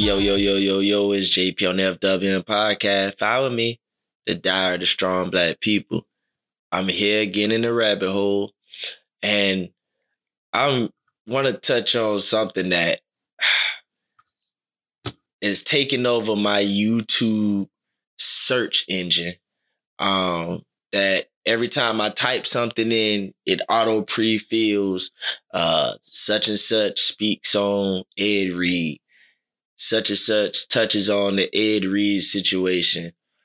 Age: 20-39